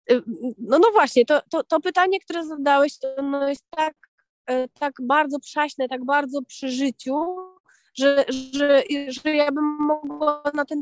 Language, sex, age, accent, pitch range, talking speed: Polish, female, 30-49, native, 235-290 Hz, 160 wpm